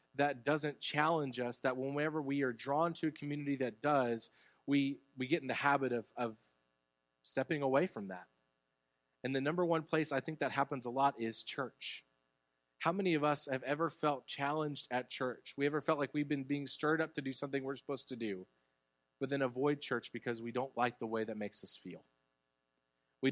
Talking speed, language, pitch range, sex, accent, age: 205 wpm, English, 105-140 Hz, male, American, 30-49